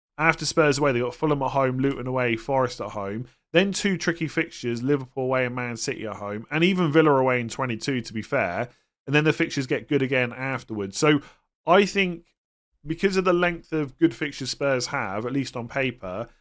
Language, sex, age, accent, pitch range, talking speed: English, male, 30-49, British, 120-155 Hz, 210 wpm